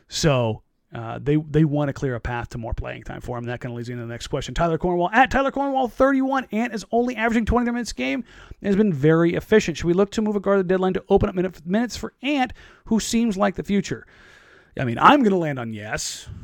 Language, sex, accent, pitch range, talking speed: English, male, American, 130-185 Hz, 265 wpm